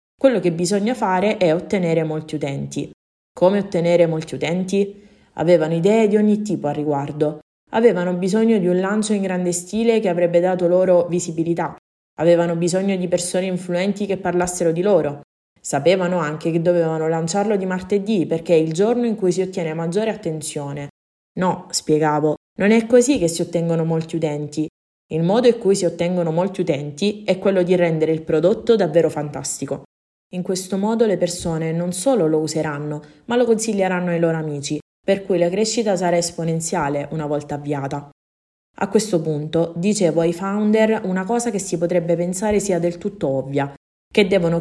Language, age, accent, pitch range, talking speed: Italian, 20-39, native, 160-195 Hz, 170 wpm